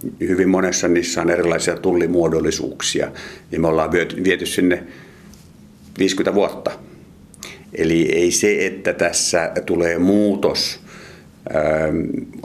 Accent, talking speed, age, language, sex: native, 105 wpm, 50-69, Finnish, male